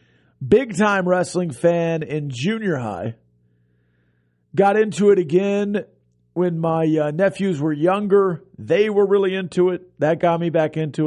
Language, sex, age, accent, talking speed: English, male, 40-59, American, 140 wpm